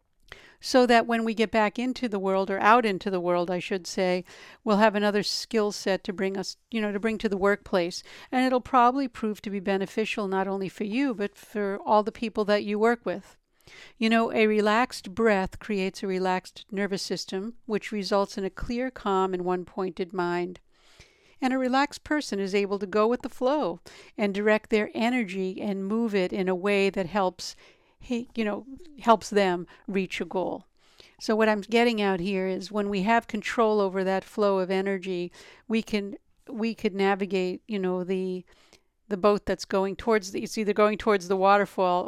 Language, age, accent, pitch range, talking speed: English, 60-79, American, 190-225 Hz, 195 wpm